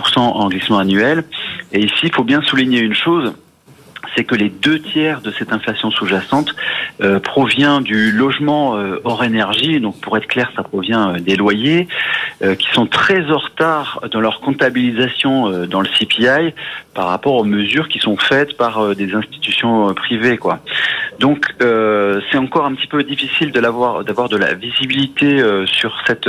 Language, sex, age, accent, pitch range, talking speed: French, male, 40-59, French, 100-135 Hz, 185 wpm